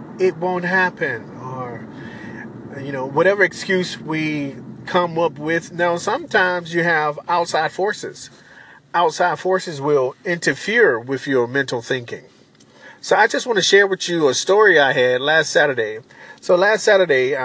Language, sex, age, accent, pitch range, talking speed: English, male, 40-59, American, 130-185 Hz, 150 wpm